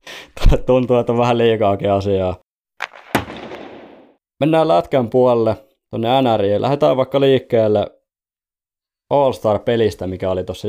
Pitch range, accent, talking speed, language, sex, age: 100-120 Hz, native, 105 wpm, Finnish, male, 20-39